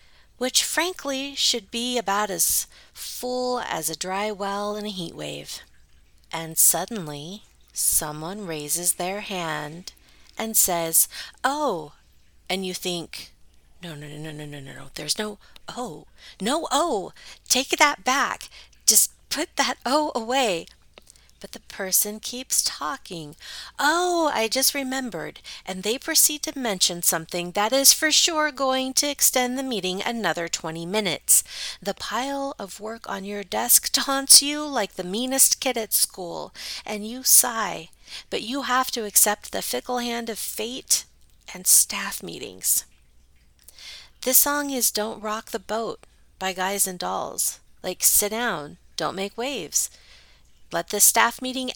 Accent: American